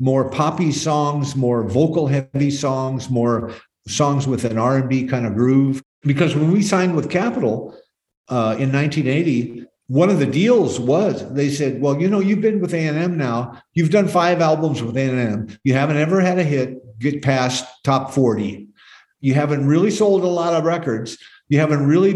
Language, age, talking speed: English, 50-69, 180 wpm